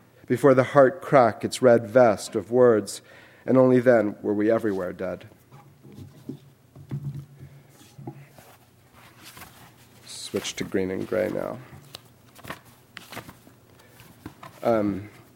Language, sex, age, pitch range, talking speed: English, male, 40-59, 110-135 Hz, 90 wpm